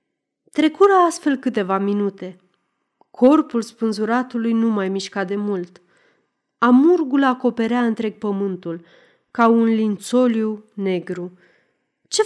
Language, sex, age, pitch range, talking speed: Romanian, female, 30-49, 190-260 Hz, 100 wpm